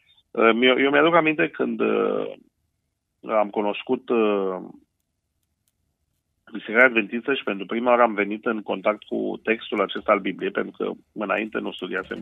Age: 40-59